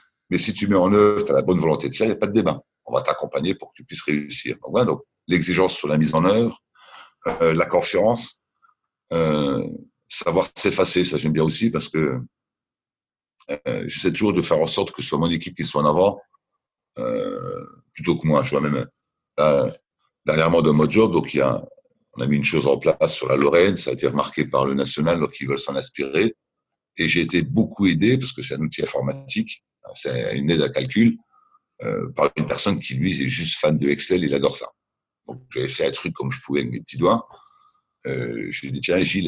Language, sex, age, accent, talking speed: English, male, 60-79, French, 225 wpm